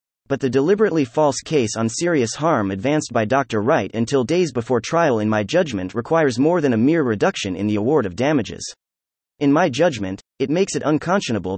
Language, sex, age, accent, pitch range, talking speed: English, male, 30-49, American, 105-160 Hz, 190 wpm